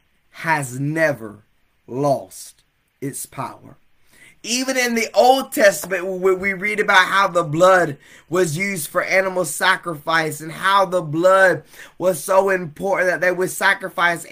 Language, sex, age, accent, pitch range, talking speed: English, male, 20-39, American, 155-195 Hz, 140 wpm